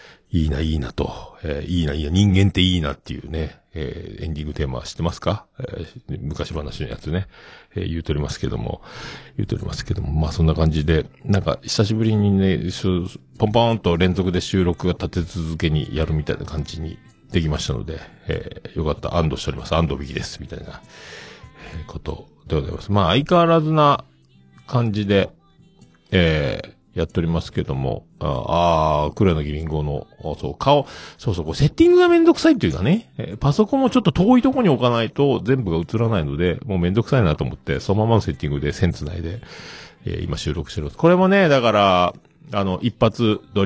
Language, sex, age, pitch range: Japanese, male, 50-69, 80-115 Hz